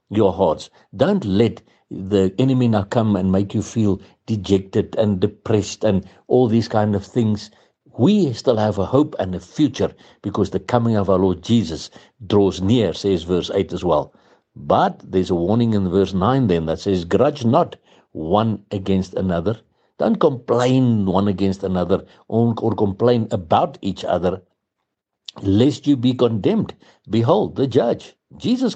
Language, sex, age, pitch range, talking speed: English, male, 60-79, 95-120 Hz, 160 wpm